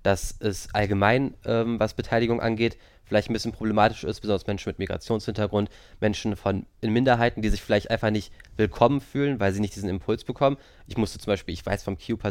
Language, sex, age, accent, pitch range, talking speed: German, male, 20-39, German, 100-115 Hz, 200 wpm